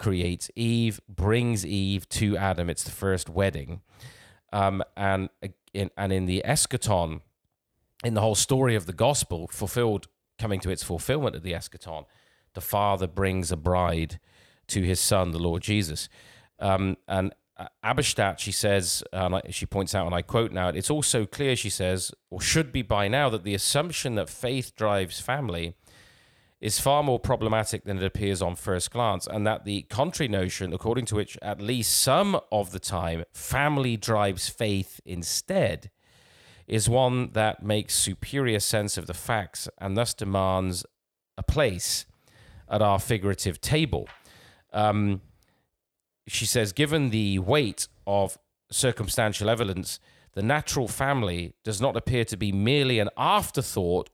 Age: 30-49